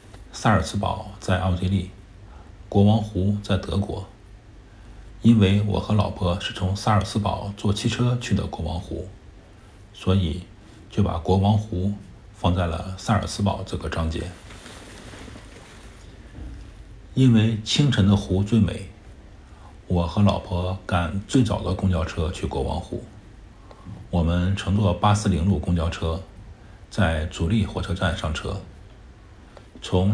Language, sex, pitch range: Chinese, male, 90-105 Hz